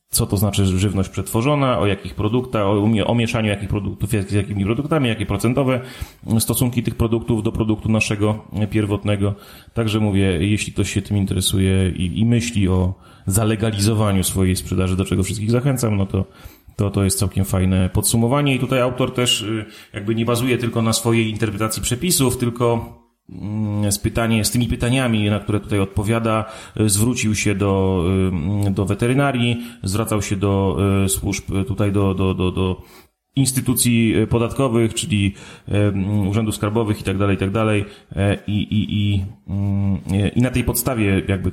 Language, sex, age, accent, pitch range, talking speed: Polish, male, 30-49, native, 95-115 Hz, 150 wpm